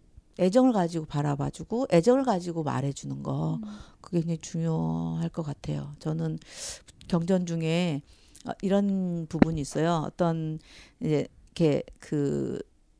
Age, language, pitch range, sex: 50-69, Korean, 140-195 Hz, female